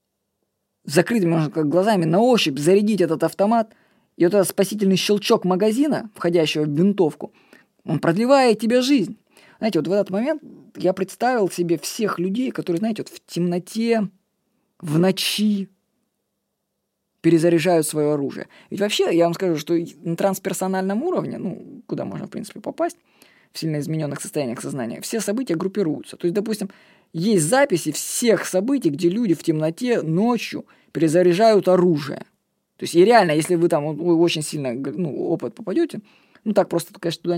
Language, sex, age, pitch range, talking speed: Russian, female, 20-39, 170-210 Hz, 150 wpm